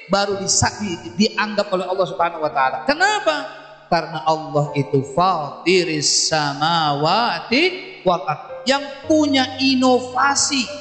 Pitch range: 175-280 Hz